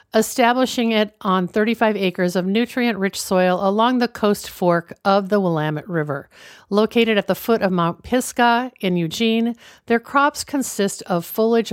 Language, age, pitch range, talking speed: English, 50-69, 180-225 Hz, 155 wpm